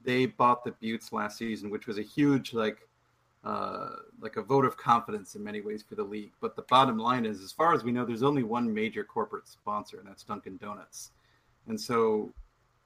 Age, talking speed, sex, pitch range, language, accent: 40-59, 210 wpm, male, 110-145 Hz, English, American